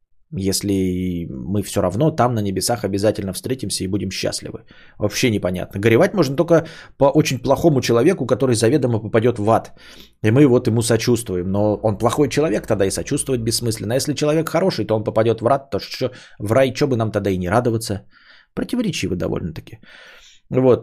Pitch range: 100-145 Hz